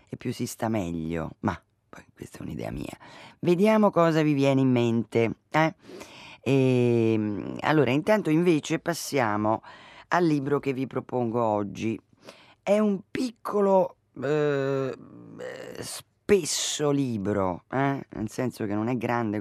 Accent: native